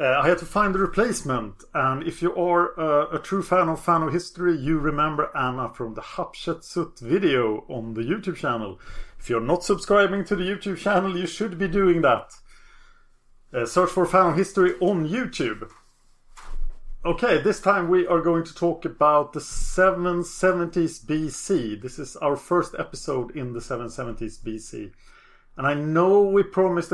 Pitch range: 130-185 Hz